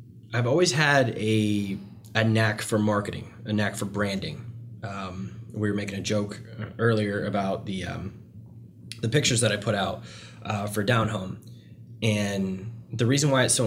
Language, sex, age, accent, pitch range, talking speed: English, male, 20-39, American, 105-115 Hz, 165 wpm